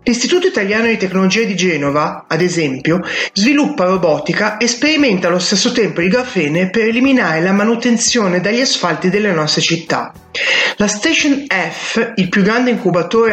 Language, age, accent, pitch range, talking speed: Italian, 30-49, native, 180-245 Hz, 150 wpm